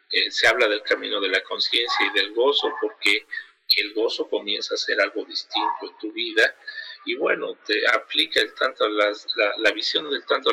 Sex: male